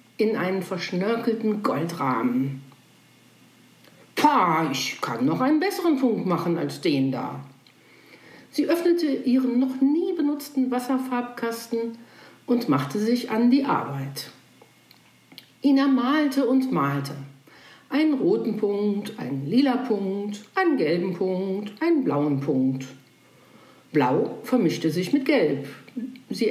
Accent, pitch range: German, 170-275 Hz